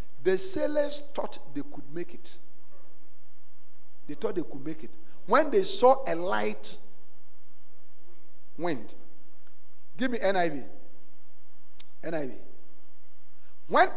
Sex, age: male, 50-69